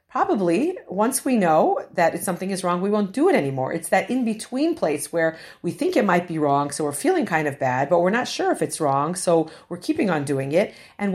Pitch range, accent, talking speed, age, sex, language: 155-215 Hz, American, 235 wpm, 50-69, female, English